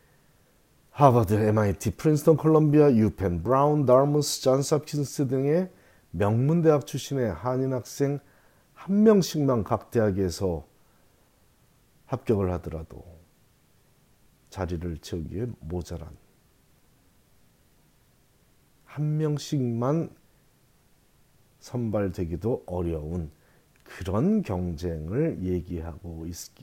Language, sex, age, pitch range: Korean, male, 40-59, 90-145 Hz